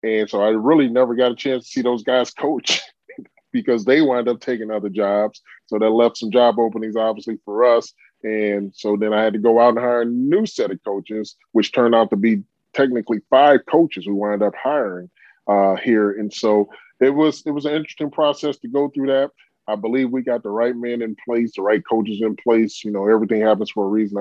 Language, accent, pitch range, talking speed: English, American, 100-110 Hz, 230 wpm